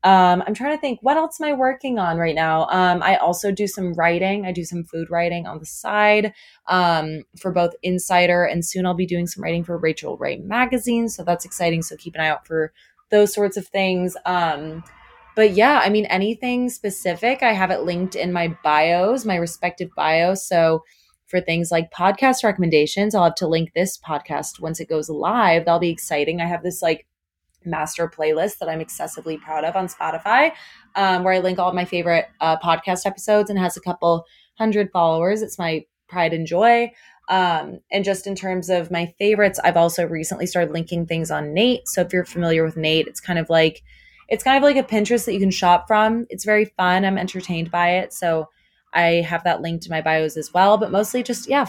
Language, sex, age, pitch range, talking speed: English, female, 20-39, 165-205 Hz, 210 wpm